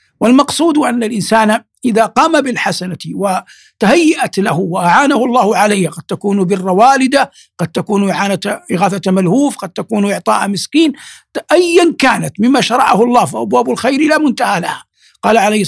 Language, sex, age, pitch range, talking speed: Arabic, male, 60-79, 185-255 Hz, 135 wpm